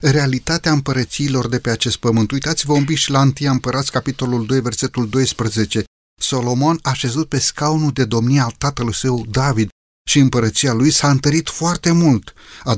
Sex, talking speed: male, 165 wpm